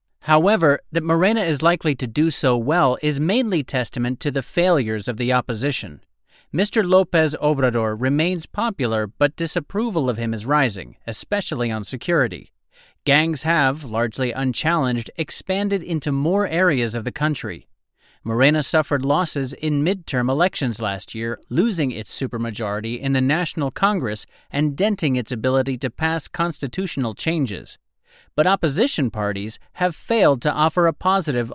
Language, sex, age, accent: English, male, 40-59, American